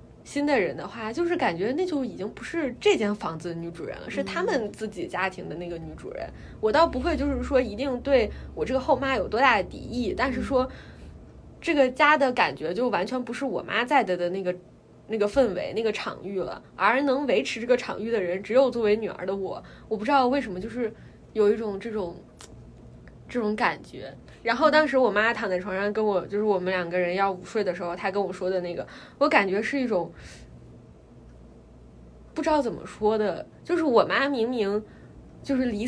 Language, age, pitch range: Chinese, 20-39, 190-265 Hz